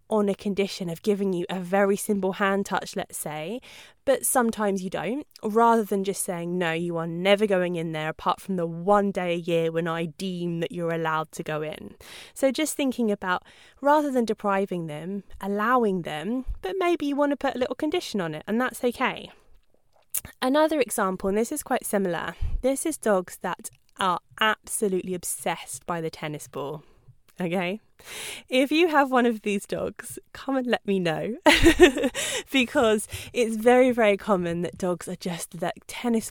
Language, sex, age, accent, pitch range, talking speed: English, female, 20-39, British, 180-230 Hz, 180 wpm